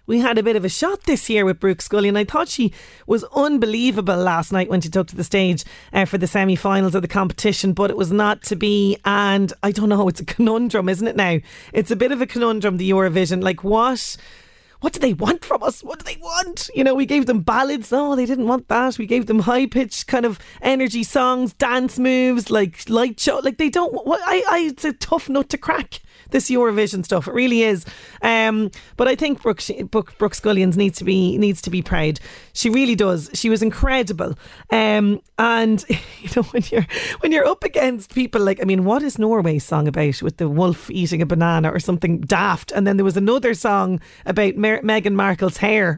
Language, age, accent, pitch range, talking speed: English, 30-49, Irish, 190-250 Hz, 220 wpm